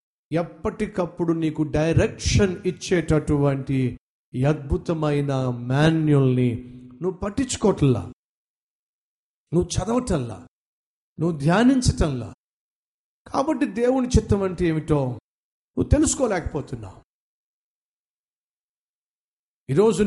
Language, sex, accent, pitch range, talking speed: Telugu, male, native, 135-180 Hz, 60 wpm